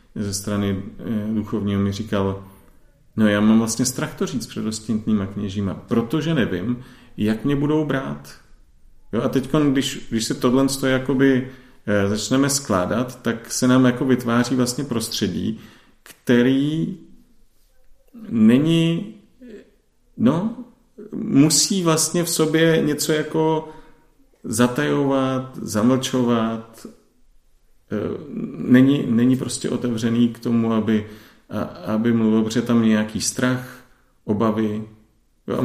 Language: Czech